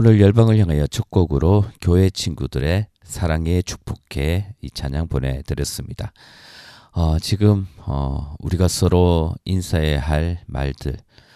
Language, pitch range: Korean, 75-100 Hz